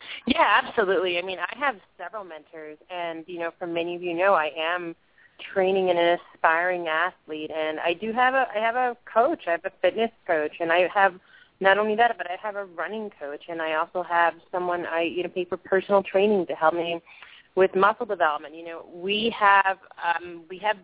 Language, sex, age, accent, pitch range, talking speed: English, female, 30-49, American, 160-205 Hz, 215 wpm